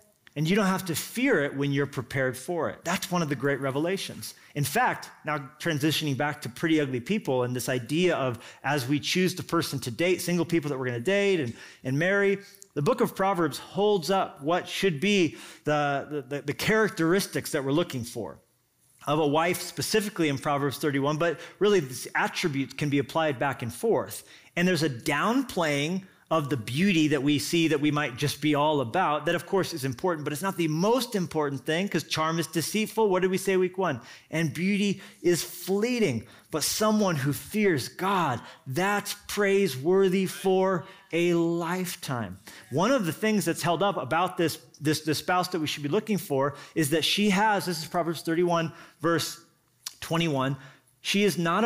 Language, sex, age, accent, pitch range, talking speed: English, male, 30-49, American, 145-190 Hz, 195 wpm